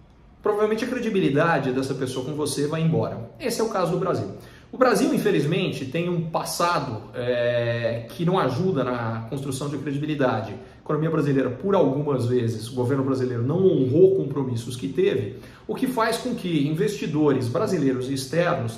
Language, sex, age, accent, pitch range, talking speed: Portuguese, male, 40-59, Brazilian, 130-190 Hz, 165 wpm